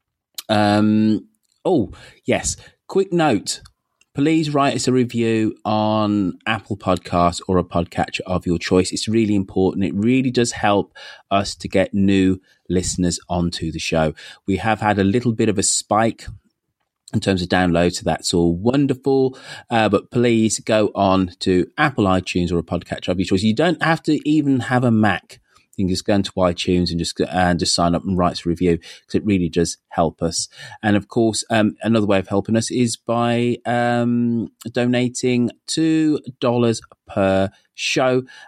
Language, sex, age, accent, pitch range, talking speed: English, male, 30-49, British, 90-115 Hz, 170 wpm